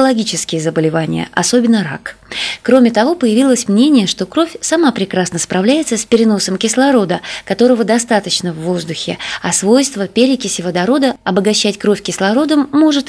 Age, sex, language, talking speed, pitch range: 20-39, female, Russian, 125 wpm, 200-260 Hz